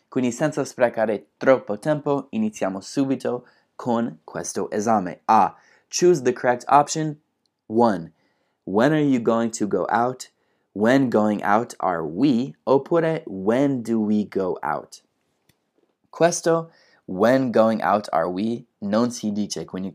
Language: Italian